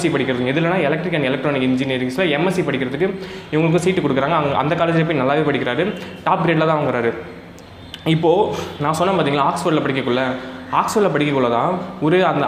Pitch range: 135-170 Hz